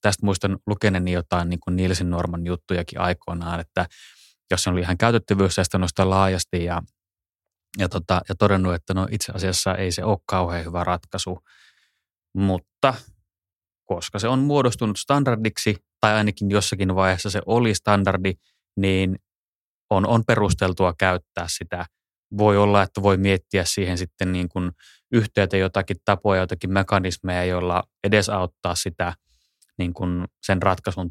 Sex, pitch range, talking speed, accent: male, 90-100 Hz, 135 wpm, native